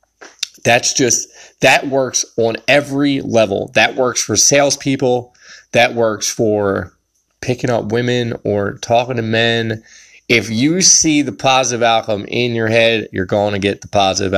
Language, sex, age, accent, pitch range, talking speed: English, male, 20-39, American, 100-120 Hz, 150 wpm